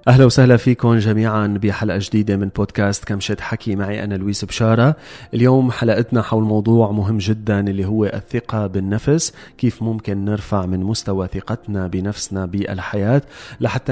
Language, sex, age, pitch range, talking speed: Arabic, male, 30-49, 100-120 Hz, 140 wpm